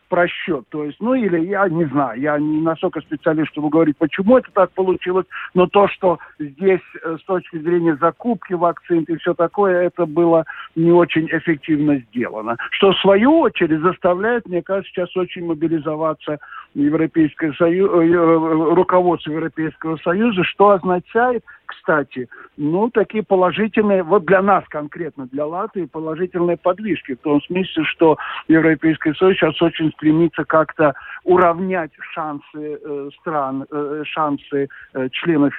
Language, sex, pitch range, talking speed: Russian, male, 145-180 Hz, 140 wpm